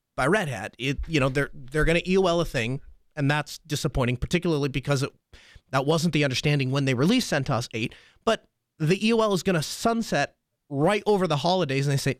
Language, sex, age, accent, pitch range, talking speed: English, male, 30-49, American, 135-175 Hz, 205 wpm